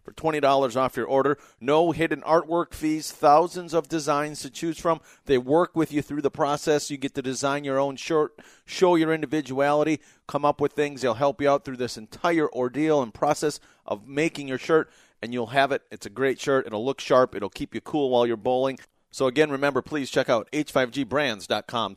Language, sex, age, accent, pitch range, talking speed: English, male, 40-59, American, 130-150 Hz, 205 wpm